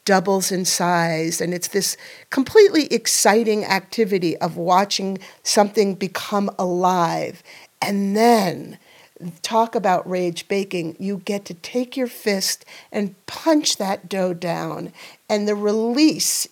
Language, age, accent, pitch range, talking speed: English, 50-69, American, 185-225 Hz, 125 wpm